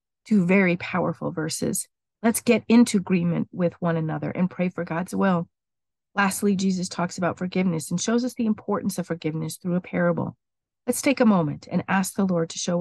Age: 40-59